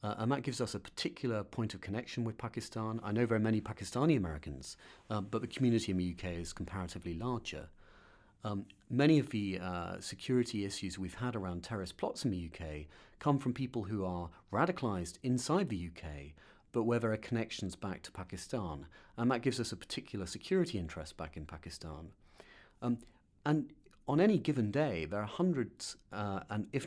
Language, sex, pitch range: English, male, 90-125 Hz